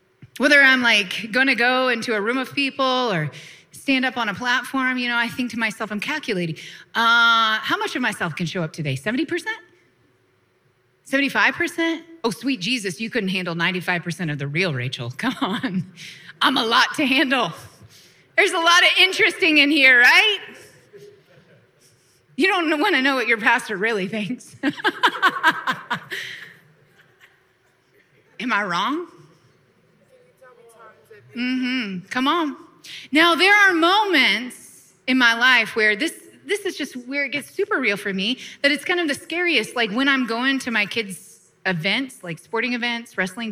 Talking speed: 155 wpm